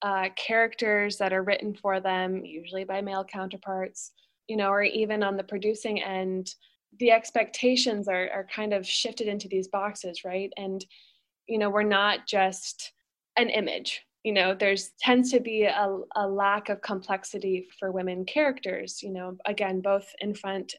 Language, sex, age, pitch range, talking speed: English, female, 20-39, 190-230 Hz, 165 wpm